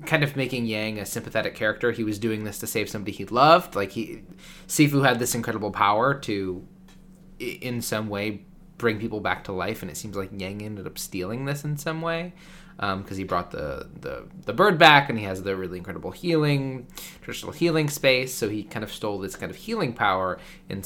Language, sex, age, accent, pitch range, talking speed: English, male, 20-39, American, 100-150 Hz, 215 wpm